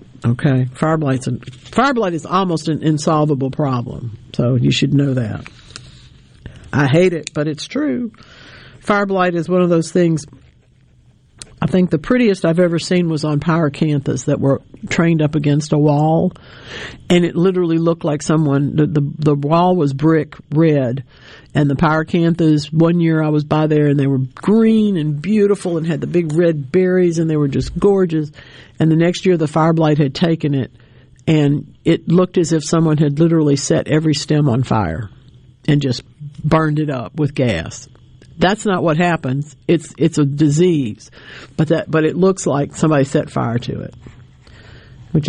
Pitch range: 140-170 Hz